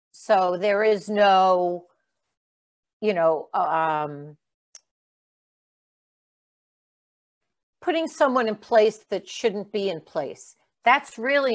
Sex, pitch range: female, 180-220 Hz